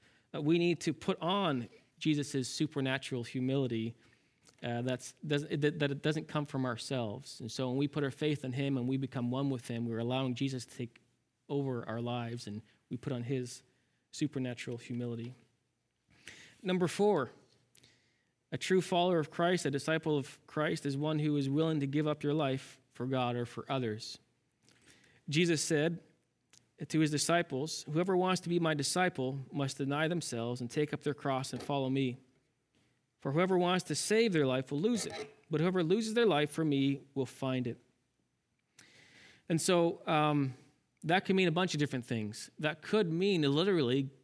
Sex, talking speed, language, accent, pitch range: male, 175 wpm, English, American, 130-160 Hz